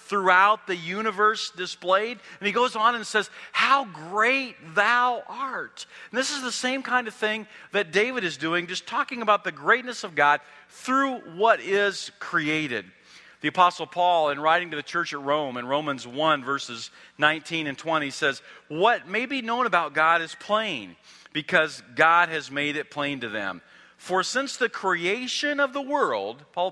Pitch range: 140-215 Hz